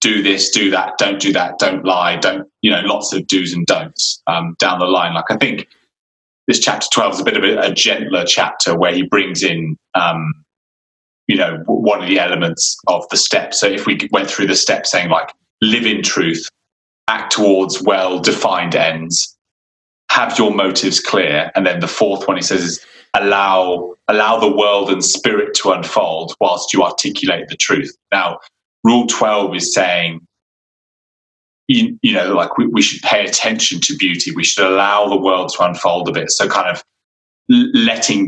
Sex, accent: male, British